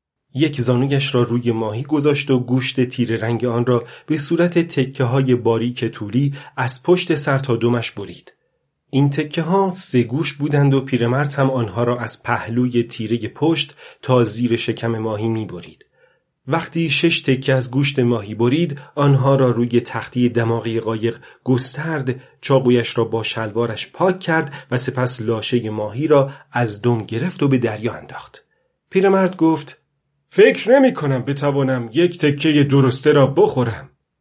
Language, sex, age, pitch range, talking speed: Persian, male, 30-49, 120-150 Hz, 150 wpm